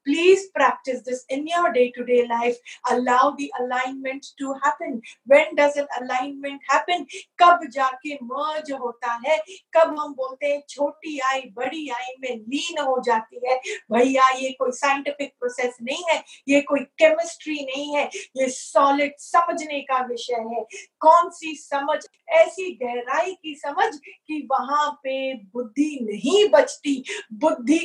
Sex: female